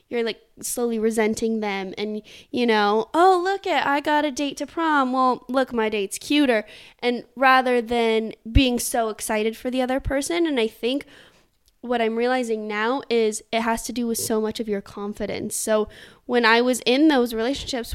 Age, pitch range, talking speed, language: 20-39, 210-245 Hz, 190 wpm, English